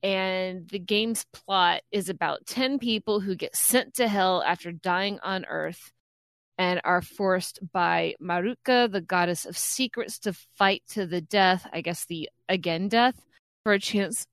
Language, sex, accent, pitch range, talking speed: English, female, American, 170-205 Hz, 165 wpm